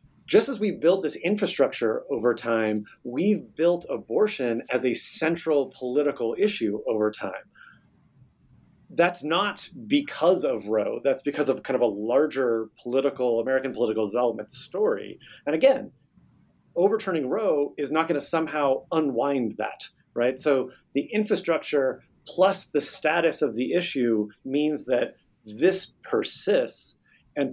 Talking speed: 130 wpm